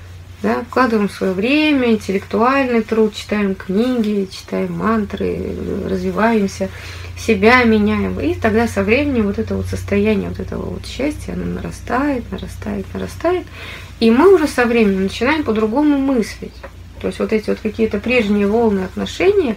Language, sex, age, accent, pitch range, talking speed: Russian, female, 20-39, native, 180-235 Hz, 140 wpm